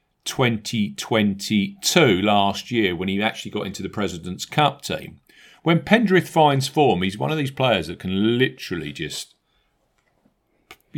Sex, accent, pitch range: male, British, 95-135 Hz